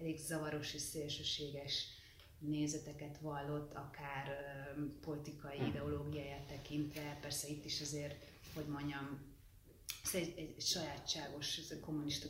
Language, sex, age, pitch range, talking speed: Hungarian, female, 30-49, 140-160 Hz, 115 wpm